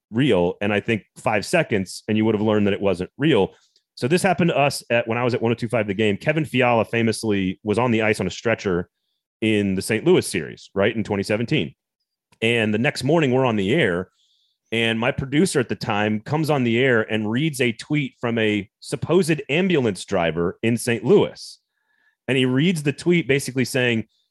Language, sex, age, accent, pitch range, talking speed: English, male, 30-49, American, 110-150 Hz, 205 wpm